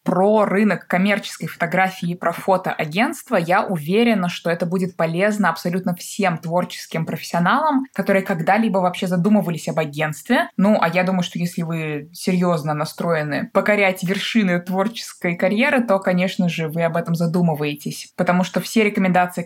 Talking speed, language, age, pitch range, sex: 140 wpm, Russian, 20-39, 175-210 Hz, female